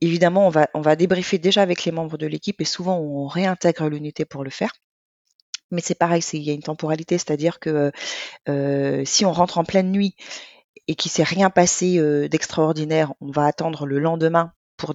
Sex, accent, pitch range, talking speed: female, French, 140-165 Hz, 205 wpm